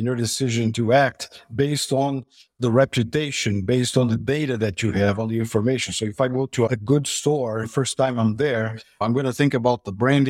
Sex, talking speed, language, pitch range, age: male, 225 wpm, English, 115-145 Hz, 50-69